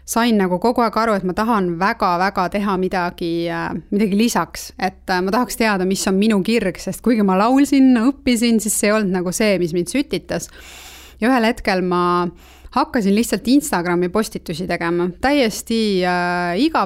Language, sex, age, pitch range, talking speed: English, female, 20-39, 185-225 Hz, 165 wpm